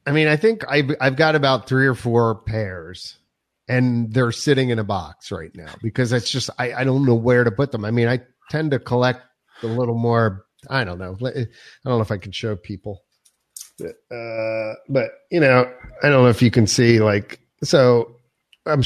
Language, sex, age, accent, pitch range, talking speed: English, male, 40-59, American, 110-130 Hz, 205 wpm